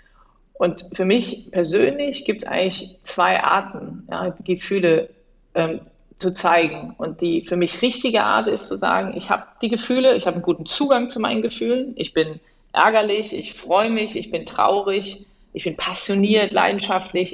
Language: German